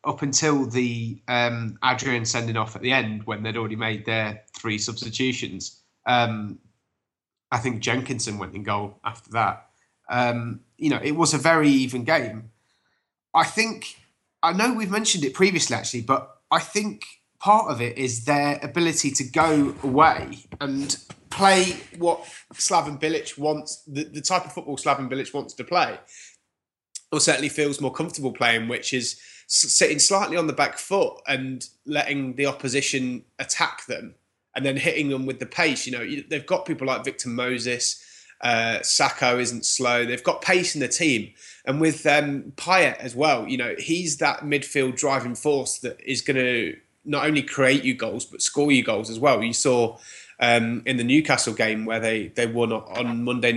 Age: 20-39